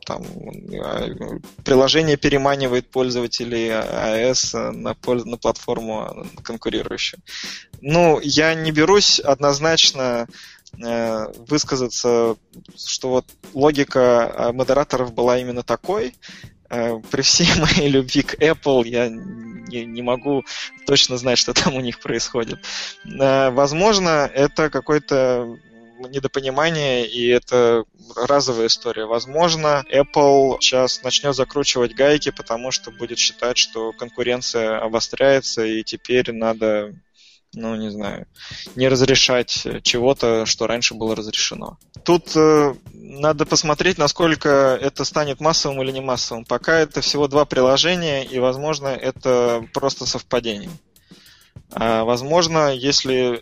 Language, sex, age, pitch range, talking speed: Russian, male, 20-39, 120-145 Hz, 105 wpm